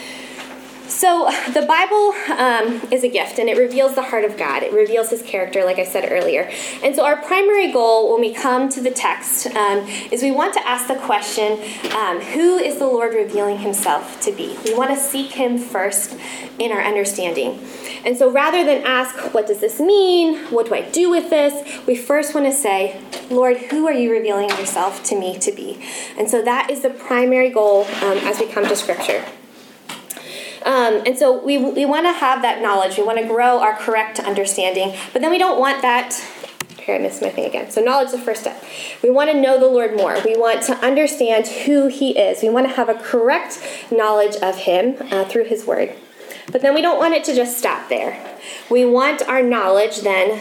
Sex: female